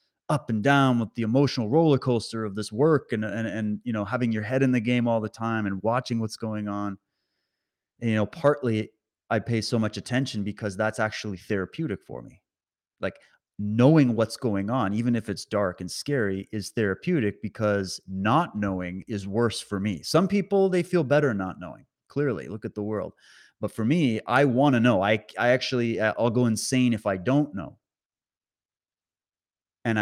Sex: male